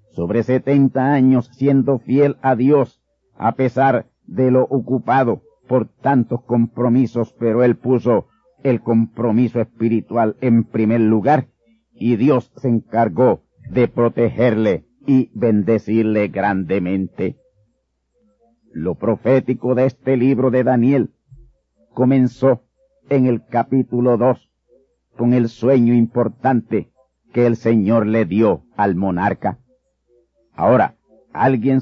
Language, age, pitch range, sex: Spanish, 50-69, 115-130 Hz, male